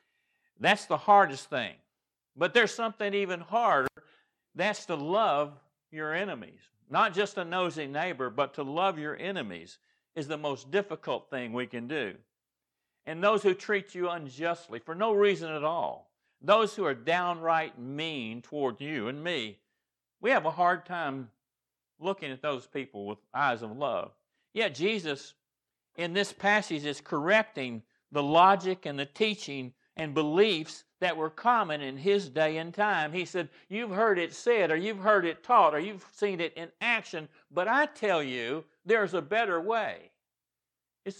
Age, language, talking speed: 60-79, English, 165 wpm